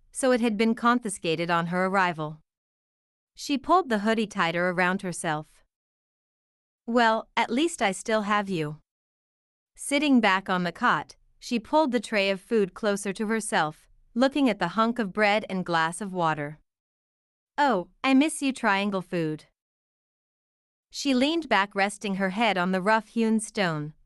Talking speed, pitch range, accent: 155 wpm, 160-235 Hz, American